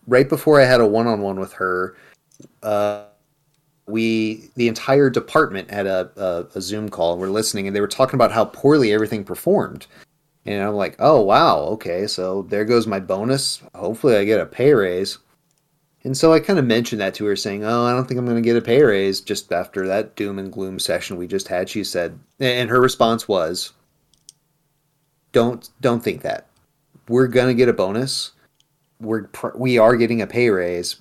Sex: male